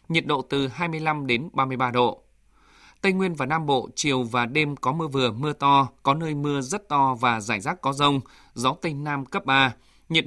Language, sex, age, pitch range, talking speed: Vietnamese, male, 20-39, 125-155 Hz, 210 wpm